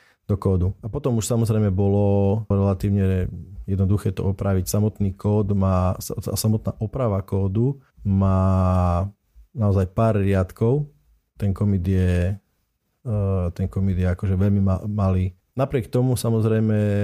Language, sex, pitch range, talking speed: Slovak, male, 95-110 Hz, 115 wpm